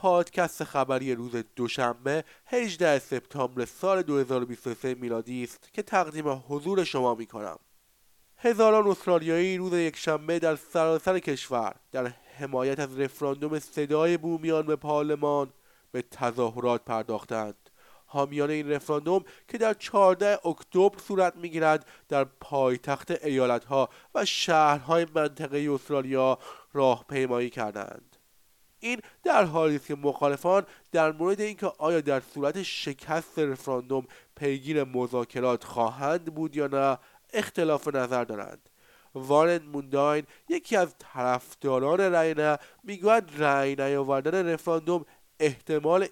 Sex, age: male, 30-49